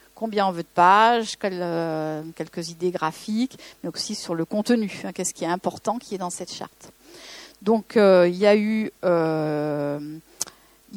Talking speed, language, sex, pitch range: 135 wpm, German, female, 200-260 Hz